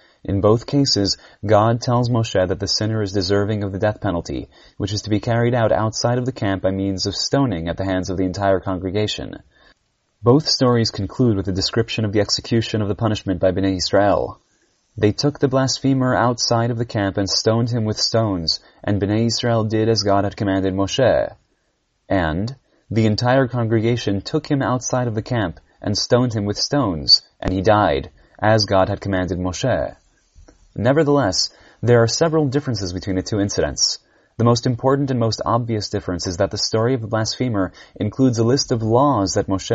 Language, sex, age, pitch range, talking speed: English, male, 30-49, 100-120 Hz, 190 wpm